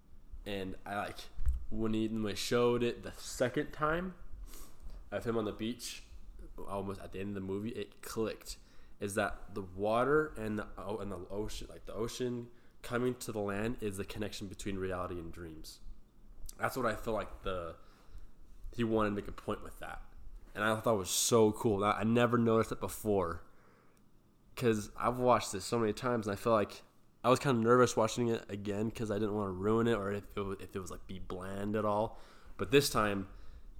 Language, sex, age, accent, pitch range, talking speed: English, male, 20-39, American, 95-115 Hz, 205 wpm